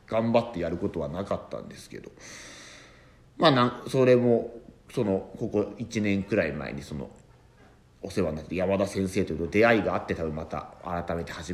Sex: male